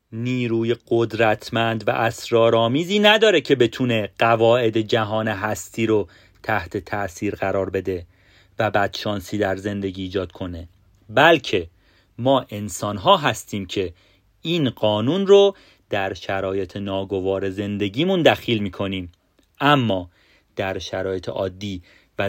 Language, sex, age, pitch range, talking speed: Persian, male, 30-49, 100-115 Hz, 110 wpm